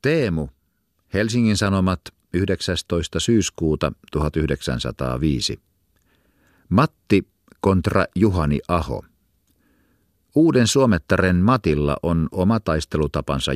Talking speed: 70 wpm